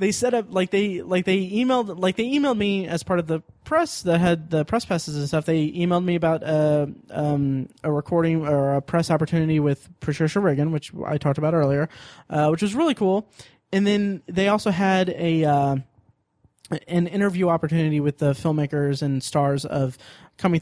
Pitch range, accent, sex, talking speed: 145-175 Hz, American, male, 190 wpm